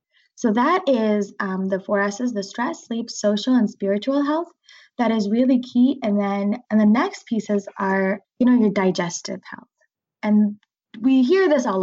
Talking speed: 180 wpm